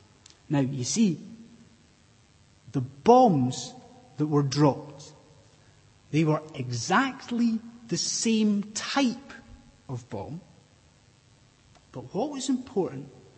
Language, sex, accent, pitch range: English, male, British, 135-210 Hz